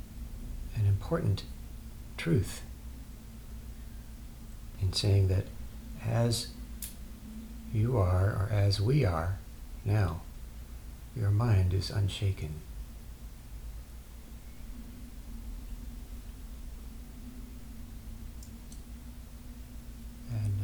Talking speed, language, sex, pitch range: 55 wpm, English, male, 75-110 Hz